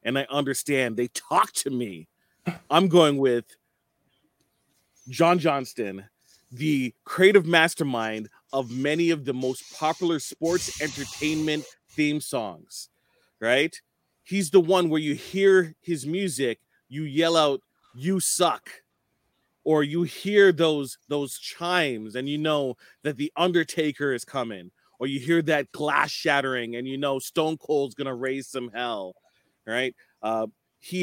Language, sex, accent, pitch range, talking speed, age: English, male, American, 130-160 Hz, 140 wpm, 30-49